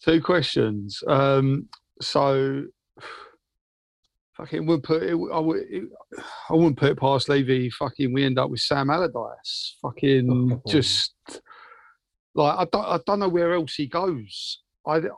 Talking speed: 135 wpm